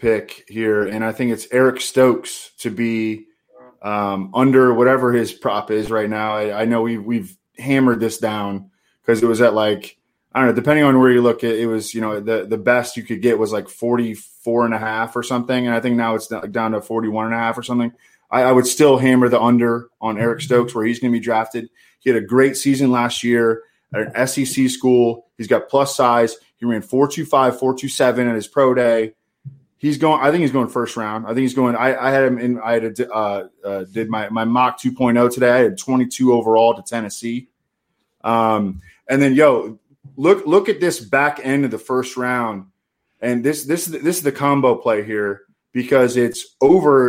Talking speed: 215 wpm